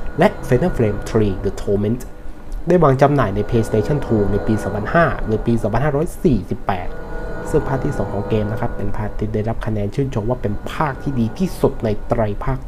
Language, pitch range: Thai, 105-130 Hz